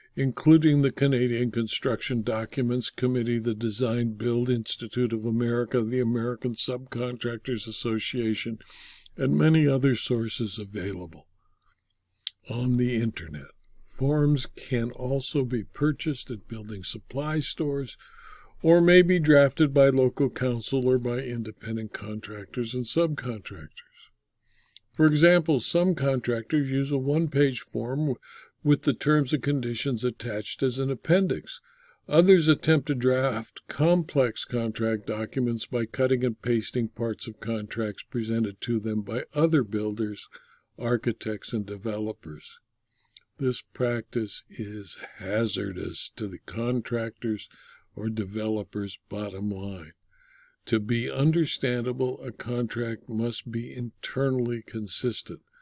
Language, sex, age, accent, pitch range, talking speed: English, male, 60-79, American, 110-135 Hz, 115 wpm